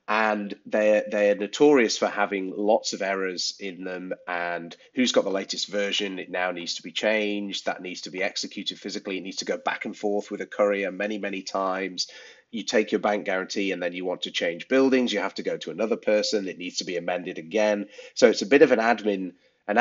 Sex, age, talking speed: male, 30-49, 225 wpm